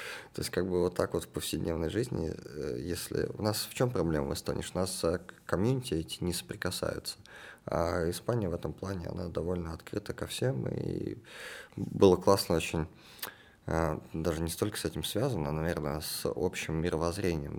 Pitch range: 80-95 Hz